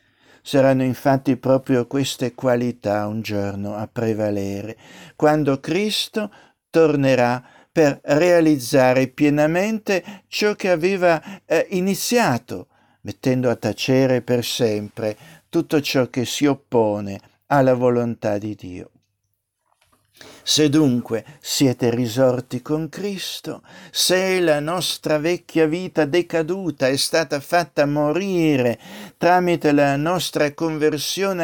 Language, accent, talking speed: Italian, native, 105 wpm